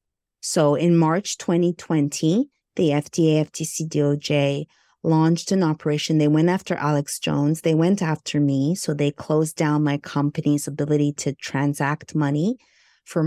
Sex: female